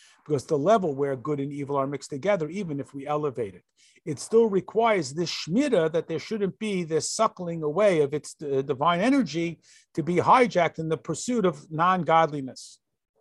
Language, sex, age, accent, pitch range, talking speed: English, male, 50-69, American, 135-170 Hz, 180 wpm